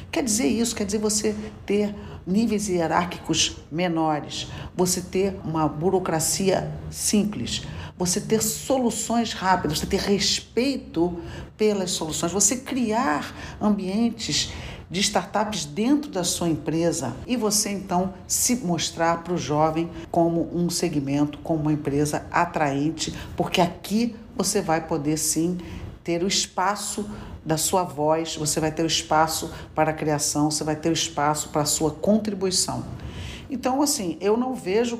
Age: 50-69